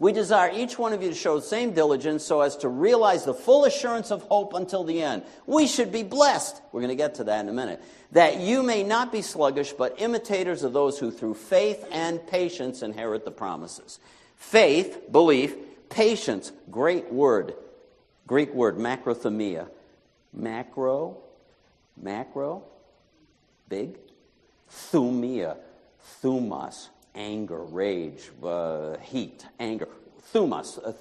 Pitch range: 125-205 Hz